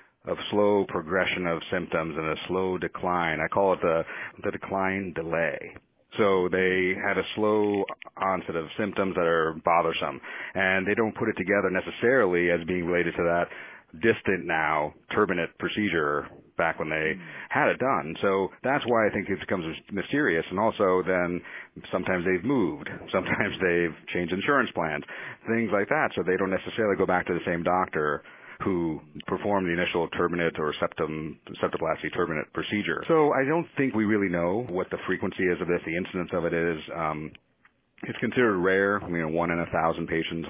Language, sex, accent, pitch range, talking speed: English, male, American, 85-95 Hz, 180 wpm